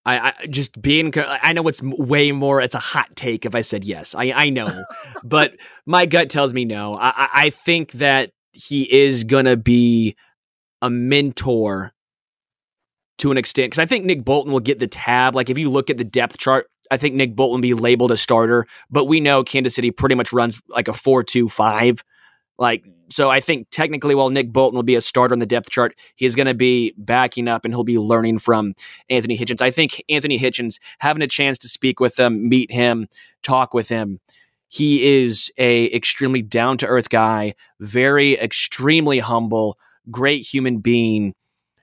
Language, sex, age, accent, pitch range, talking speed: English, male, 20-39, American, 120-135 Hz, 195 wpm